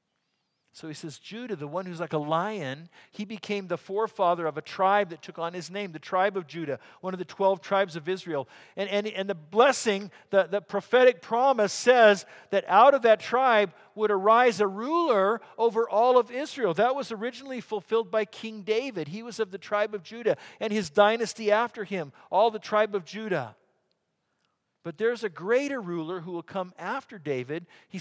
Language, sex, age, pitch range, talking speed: English, male, 50-69, 155-220 Hz, 195 wpm